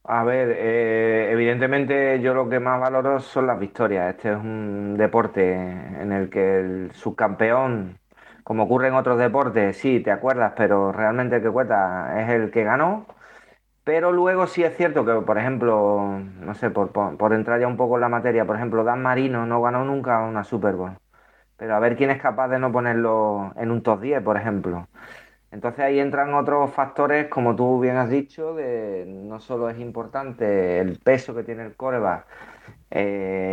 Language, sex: Spanish, male